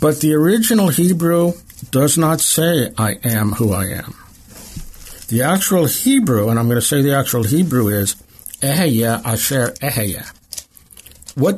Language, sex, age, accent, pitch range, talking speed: English, male, 60-79, American, 105-150 Hz, 145 wpm